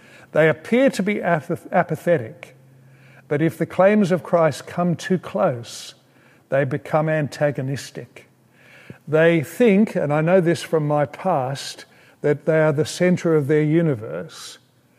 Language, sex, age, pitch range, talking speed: English, male, 50-69, 140-165 Hz, 135 wpm